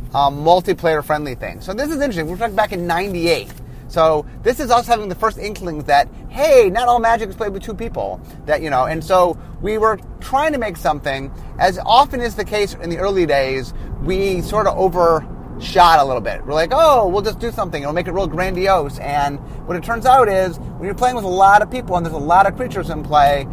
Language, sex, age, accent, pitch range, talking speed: English, male, 30-49, American, 150-205 Hz, 235 wpm